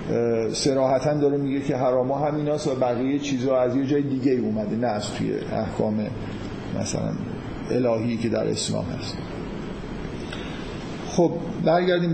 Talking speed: 130 wpm